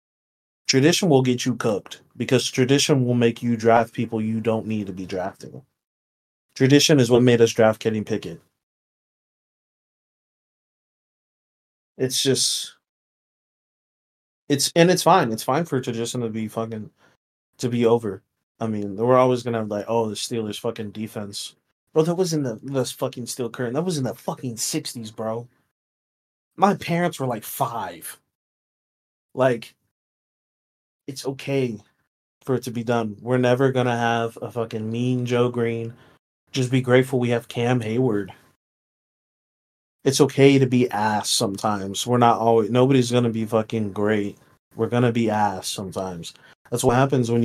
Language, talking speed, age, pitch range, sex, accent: English, 160 wpm, 20-39, 110-130 Hz, male, American